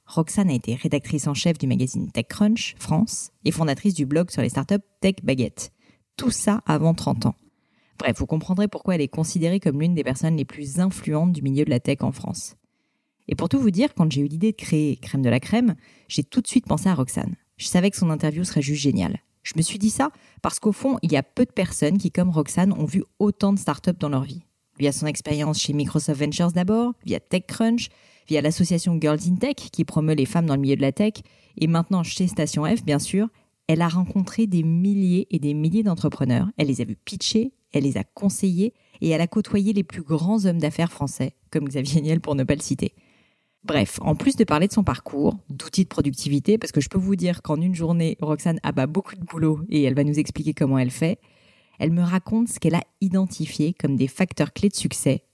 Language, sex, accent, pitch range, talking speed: French, female, French, 150-195 Hz, 230 wpm